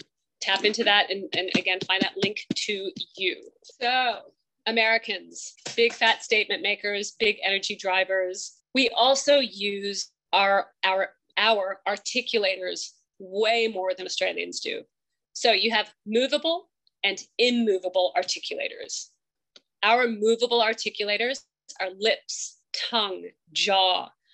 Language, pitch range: English, 195-245 Hz